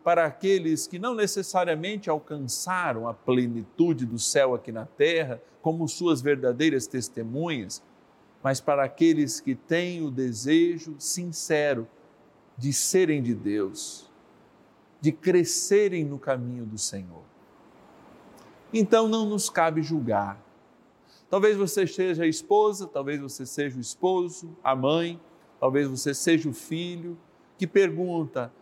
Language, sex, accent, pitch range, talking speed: Portuguese, male, Brazilian, 140-200 Hz, 125 wpm